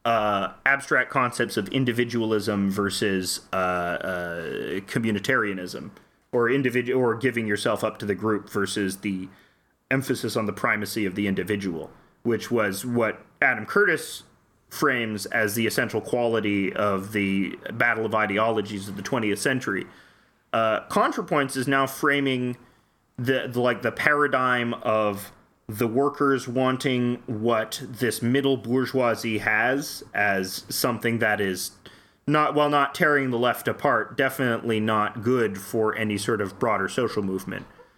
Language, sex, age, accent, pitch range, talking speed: English, male, 30-49, American, 105-145 Hz, 135 wpm